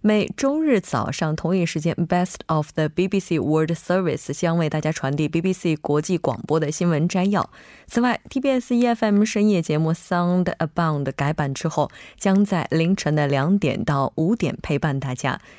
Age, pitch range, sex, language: 20-39, 150-200 Hz, female, Korean